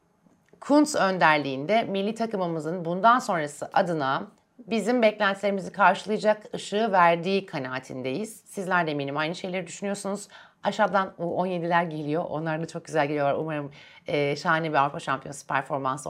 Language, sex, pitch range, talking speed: Turkish, female, 150-205 Hz, 125 wpm